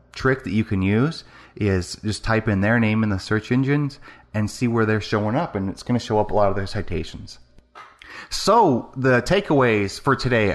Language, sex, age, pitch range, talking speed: English, male, 30-49, 100-145 Hz, 210 wpm